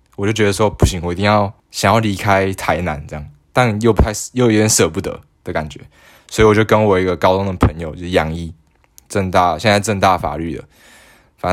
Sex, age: male, 10-29